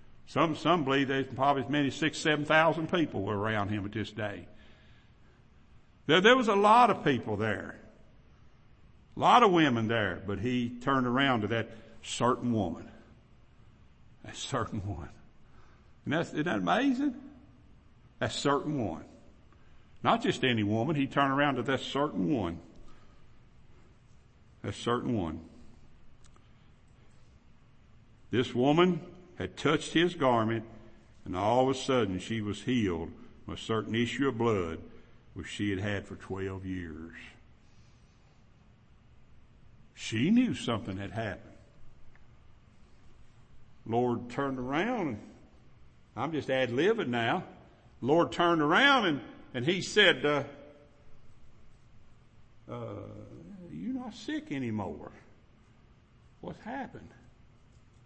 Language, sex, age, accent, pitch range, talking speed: English, male, 60-79, American, 105-145 Hz, 120 wpm